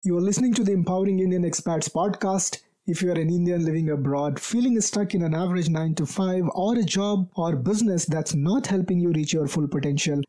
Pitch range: 160-200 Hz